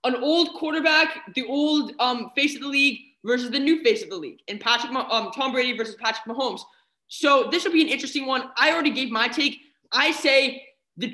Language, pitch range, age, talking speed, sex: English, 235-295 Hz, 20-39, 215 wpm, male